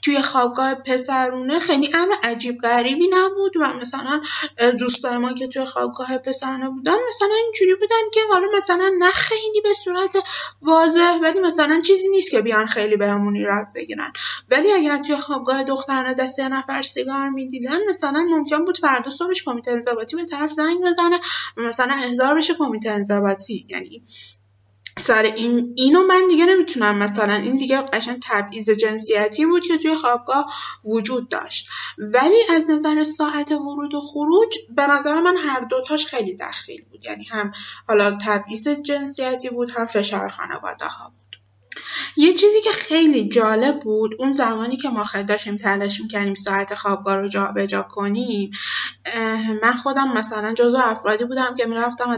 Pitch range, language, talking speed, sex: 220-315 Hz, Persian, 150 wpm, female